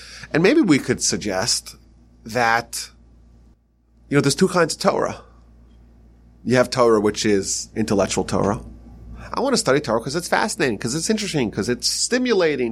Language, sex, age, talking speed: English, male, 30-49, 160 wpm